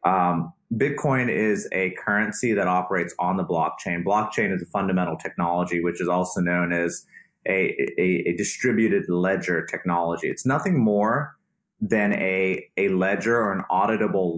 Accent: American